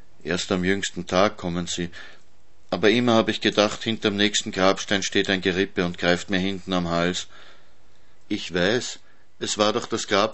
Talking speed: 175 wpm